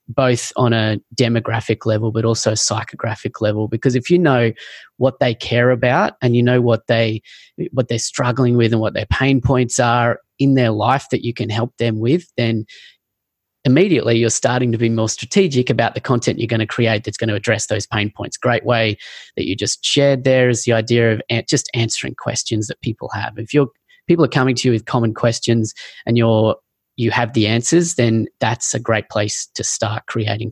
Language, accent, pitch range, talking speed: English, Australian, 115-130 Hz, 205 wpm